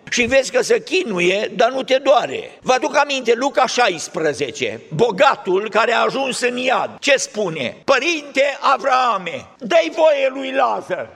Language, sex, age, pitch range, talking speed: Romanian, male, 50-69, 240-290 Hz, 150 wpm